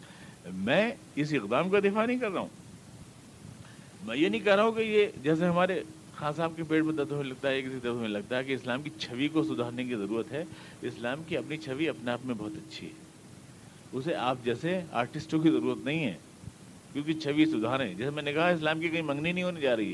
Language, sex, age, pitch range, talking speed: Urdu, male, 50-69, 125-165 Hz, 230 wpm